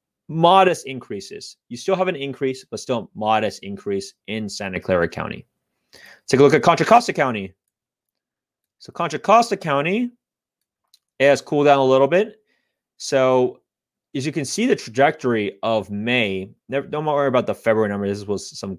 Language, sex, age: English, male, 30-49